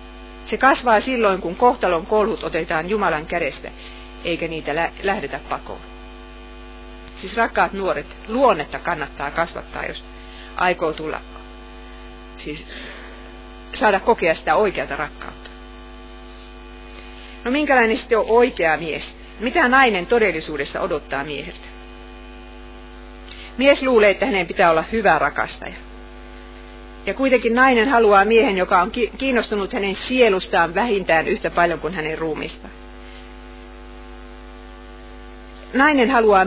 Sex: female